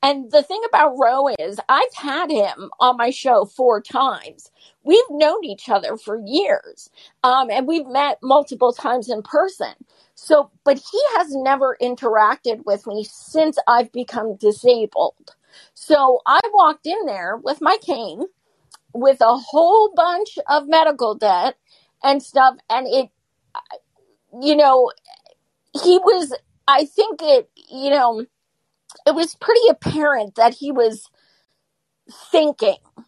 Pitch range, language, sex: 230-300 Hz, English, female